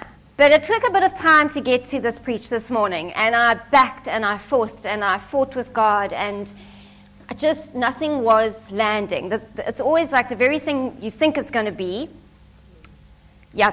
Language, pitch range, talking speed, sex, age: English, 220-285 Hz, 190 wpm, female, 40-59